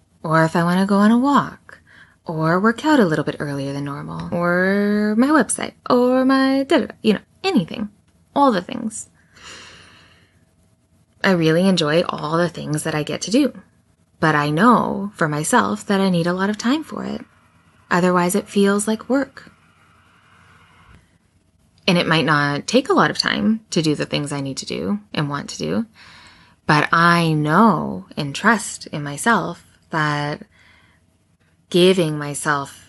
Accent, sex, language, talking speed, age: American, female, English, 165 wpm, 20-39